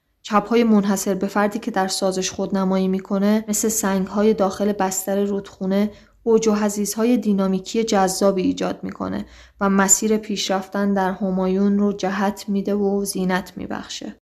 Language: Persian